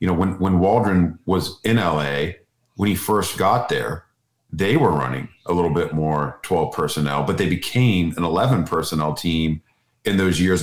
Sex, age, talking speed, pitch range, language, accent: male, 40-59, 175 wpm, 80-100 Hz, English, American